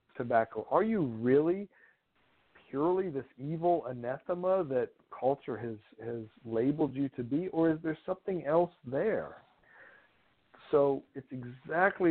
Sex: male